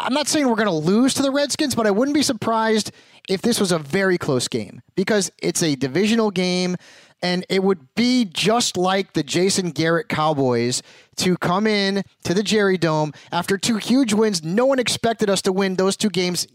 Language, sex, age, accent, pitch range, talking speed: English, male, 30-49, American, 165-210 Hz, 205 wpm